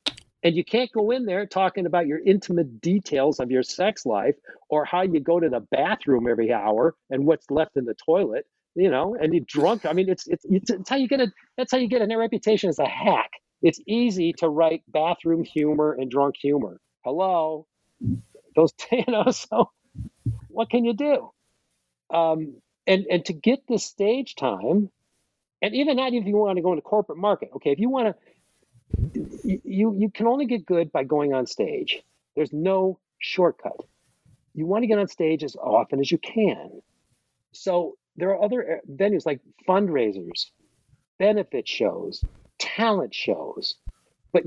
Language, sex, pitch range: English, male, 150-210 Hz